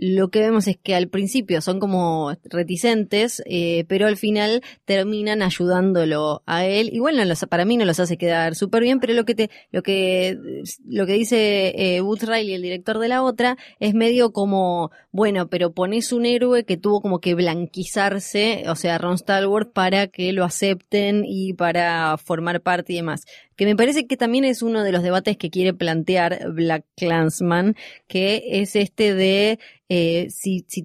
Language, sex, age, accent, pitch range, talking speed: Spanish, female, 20-39, Argentinian, 175-210 Hz, 180 wpm